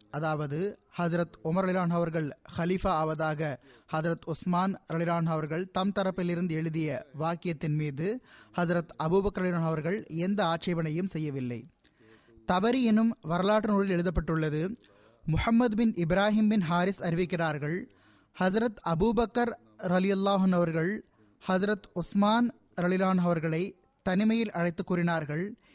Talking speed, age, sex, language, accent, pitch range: 105 wpm, 20-39, male, Tamil, native, 165-200 Hz